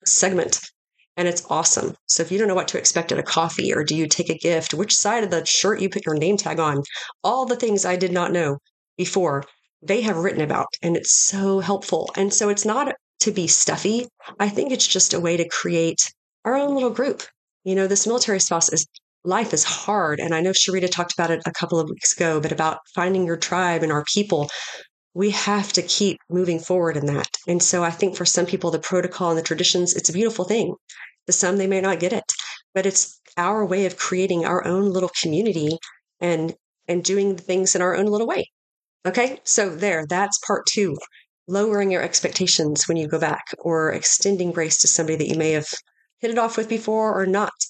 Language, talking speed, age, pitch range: English, 220 wpm, 30-49, 170-200 Hz